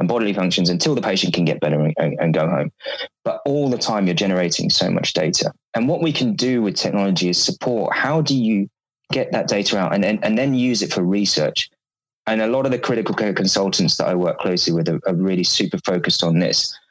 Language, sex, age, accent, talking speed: English, male, 20-39, British, 225 wpm